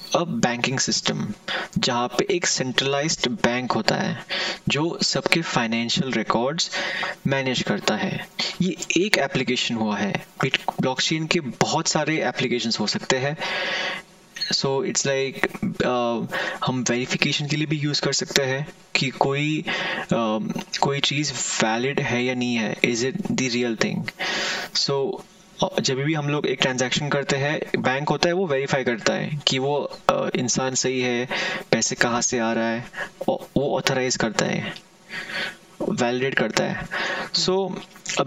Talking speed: 115 wpm